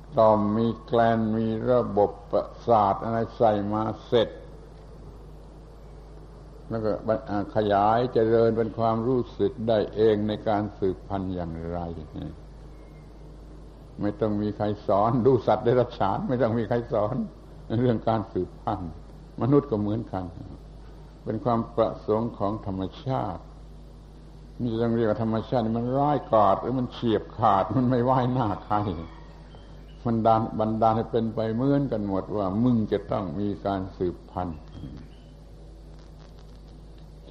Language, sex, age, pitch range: Thai, male, 70-89, 100-120 Hz